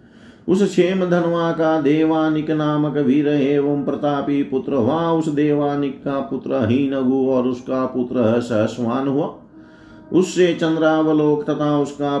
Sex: male